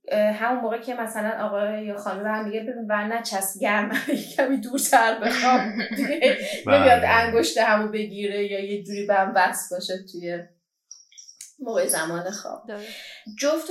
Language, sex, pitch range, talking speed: Persian, female, 180-235 Hz, 140 wpm